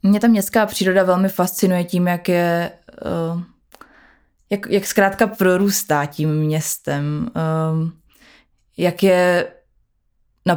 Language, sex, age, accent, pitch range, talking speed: Czech, female, 20-39, native, 160-185 Hz, 100 wpm